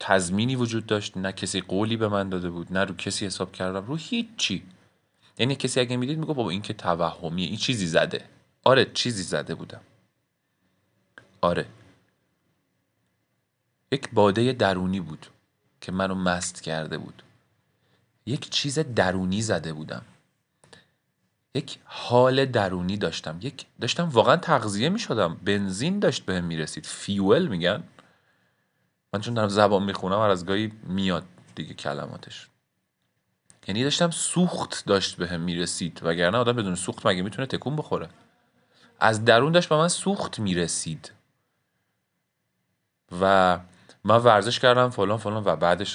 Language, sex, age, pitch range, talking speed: Persian, male, 40-59, 90-125 Hz, 135 wpm